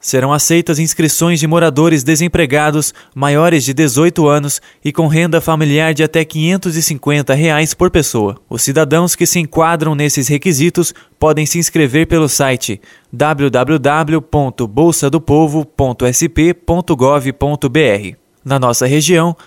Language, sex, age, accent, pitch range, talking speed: Portuguese, male, 20-39, Brazilian, 145-165 Hz, 110 wpm